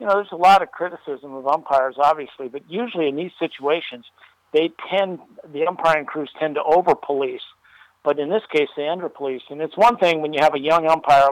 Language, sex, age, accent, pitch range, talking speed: English, male, 50-69, American, 150-180 Hz, 210 wpm